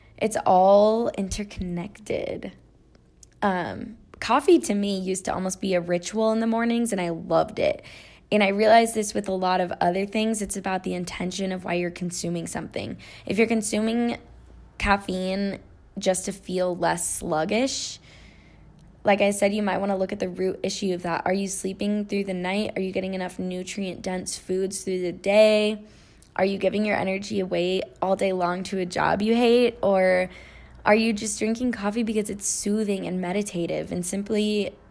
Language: English